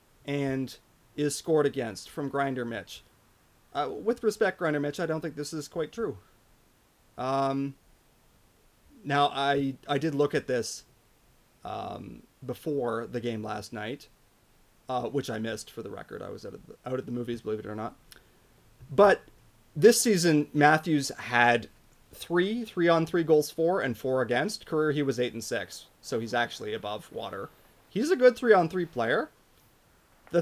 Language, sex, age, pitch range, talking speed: English, male, 30-49, 125-165 Hz, 160 wpm